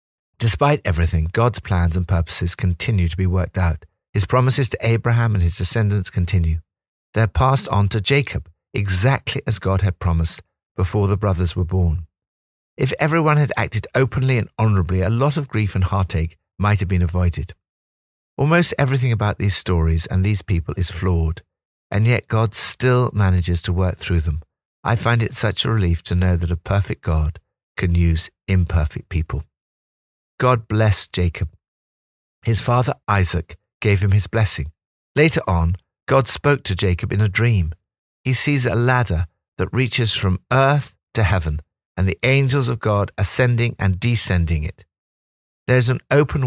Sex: male